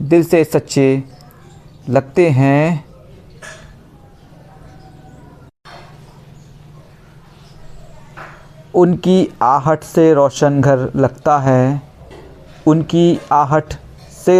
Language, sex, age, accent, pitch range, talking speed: Hindi, male, 50-69, native, 135-155 Hz, 65 wpm